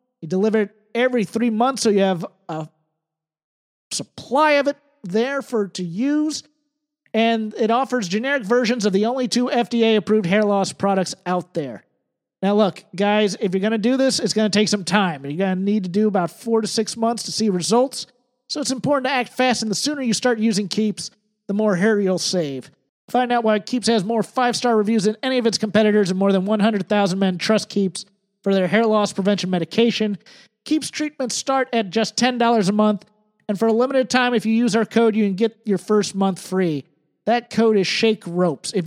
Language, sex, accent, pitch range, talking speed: English, male, American, 195-245 Hz, 210 wpm